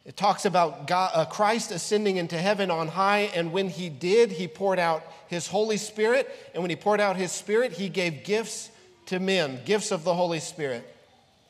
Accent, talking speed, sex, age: American, 200 wpm, male, 40-59